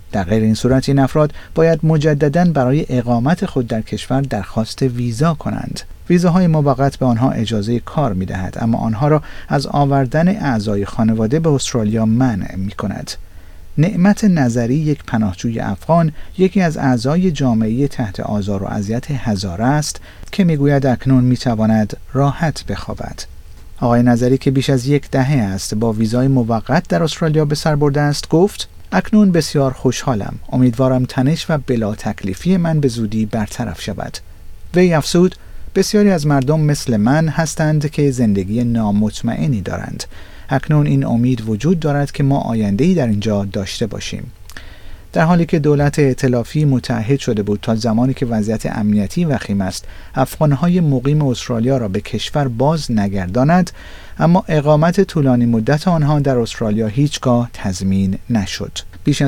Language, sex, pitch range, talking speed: Persian, male, 110-150 Hz, 150 wpm